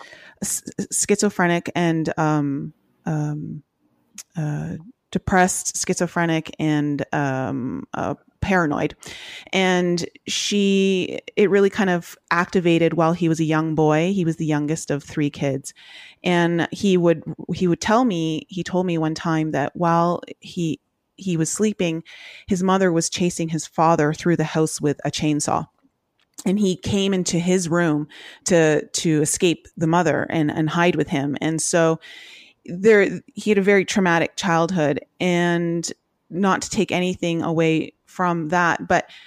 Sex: female